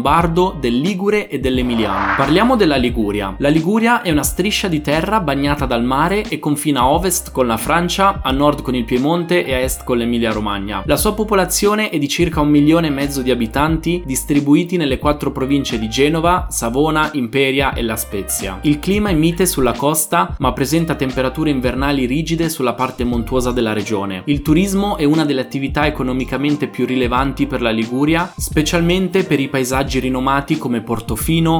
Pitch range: 125-165 Hz